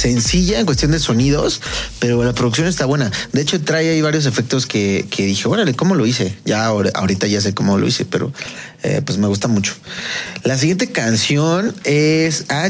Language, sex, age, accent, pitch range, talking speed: Spanish, male, 30-49, Mexican, 105-145 Hz, 195 wpm